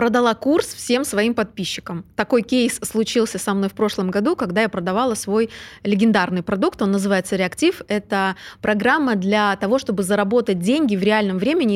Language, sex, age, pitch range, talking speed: Russian, female, 20-39, 195-235 Hz, 165 wpm